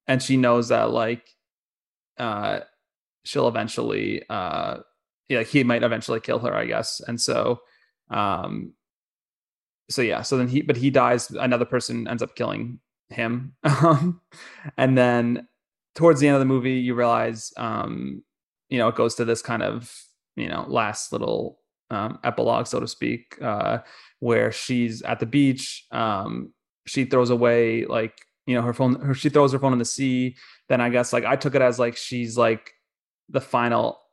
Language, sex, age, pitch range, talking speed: English, male, 20-39, 120-135 Hz, 170 wpm